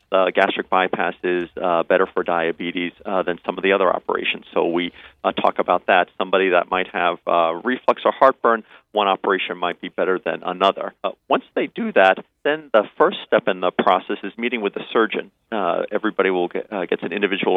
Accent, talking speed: American, 210 wpm